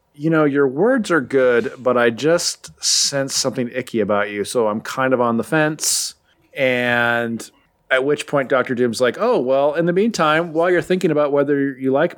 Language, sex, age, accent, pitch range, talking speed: English, male, 30-49, American, 120-150 Hz, 195 wpm